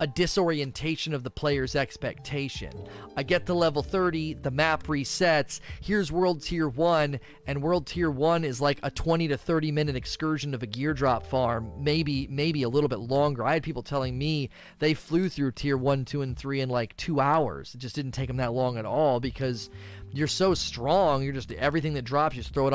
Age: 30-49